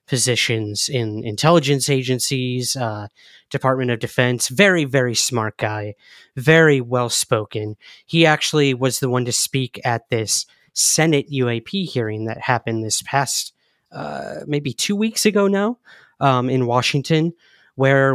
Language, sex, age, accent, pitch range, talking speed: English, male, 30-49, American, 125-150 Hz, 130 wpm